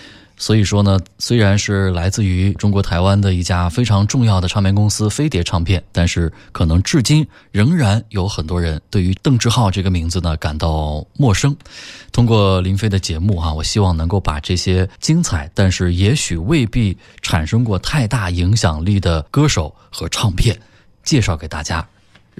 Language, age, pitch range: Chinese, 20-39, 90-120 Hz